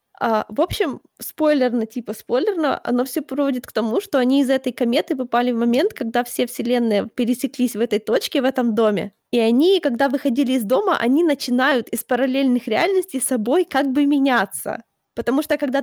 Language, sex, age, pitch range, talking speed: Ukrainian, female, 20-39, 230-280 Hz, 180 wpm